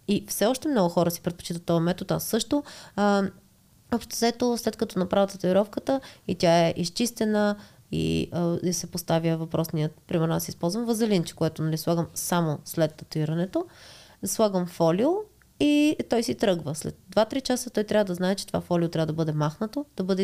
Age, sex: 20-39, female